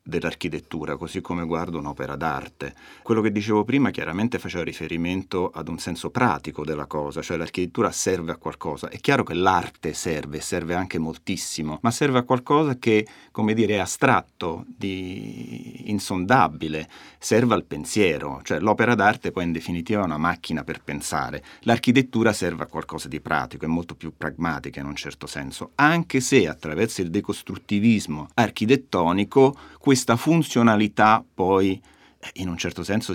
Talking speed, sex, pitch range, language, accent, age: 150 wpm, male, 85-115 Hz, Italian, native, 40-59